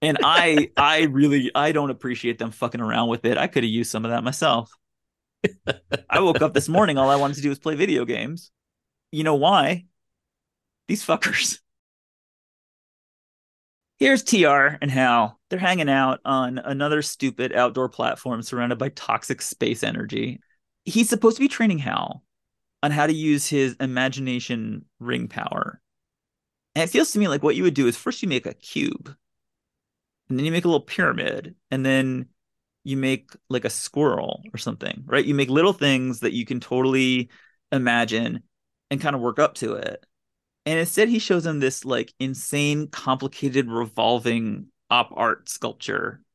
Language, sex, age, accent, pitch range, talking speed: English, male, 30-49, American, 125-155 Hz, 170 wpm